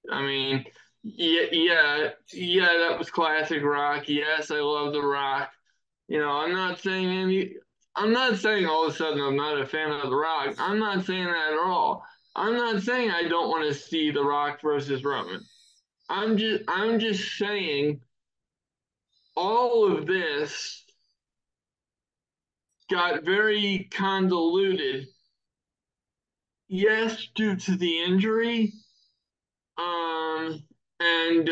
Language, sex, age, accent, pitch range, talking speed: English, male, 20-39, American, 155-195 Hz, 135 wpm